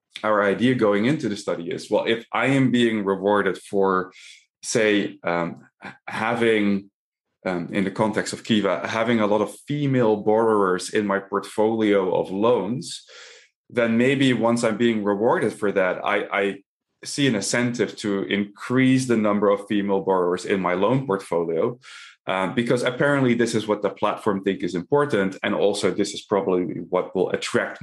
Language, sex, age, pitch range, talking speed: English, male, 20-39, 95-120 Hz, 165 wpm